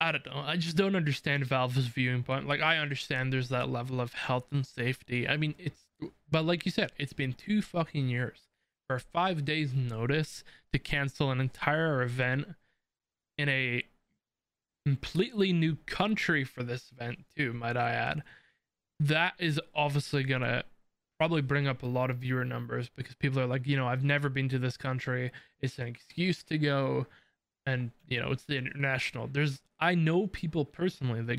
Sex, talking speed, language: male, 180 wpm, English